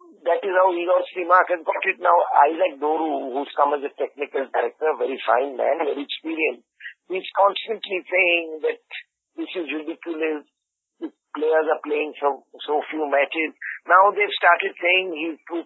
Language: English